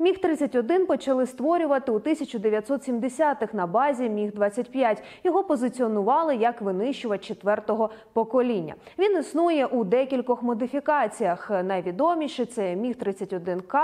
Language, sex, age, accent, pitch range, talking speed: Ukrainian, female, 20-39, native, 210-285 Hz, 95 wpm